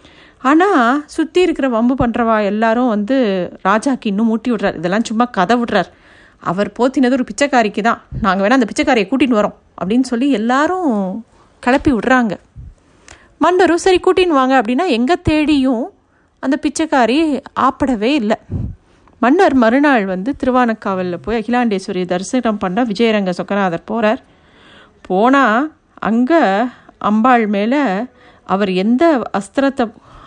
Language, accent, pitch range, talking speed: Tamil, native, 215-280 Hz, 120 wpm